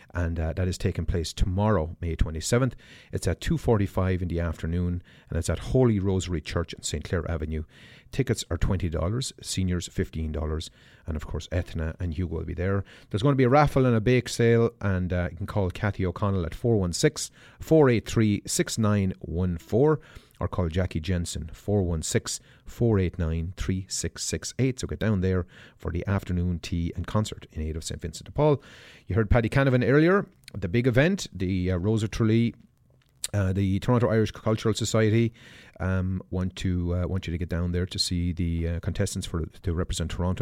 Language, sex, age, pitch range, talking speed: English, male, 30-49, 90-110 Hz, 175 wpm